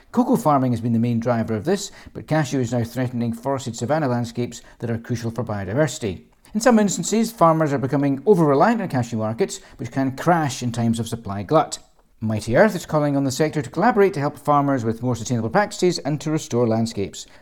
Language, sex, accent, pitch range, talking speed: English, male, British, 115-155 Hz, 210 wpm